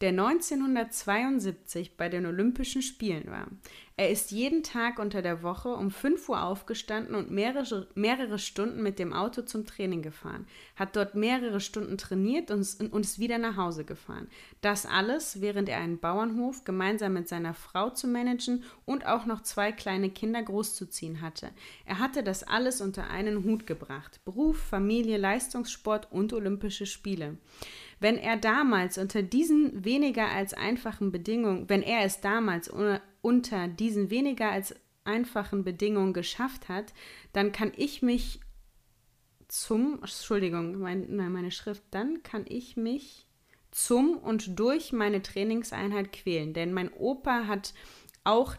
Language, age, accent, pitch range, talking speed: German, 20-39, German, 190-235 Hz, 150 wpm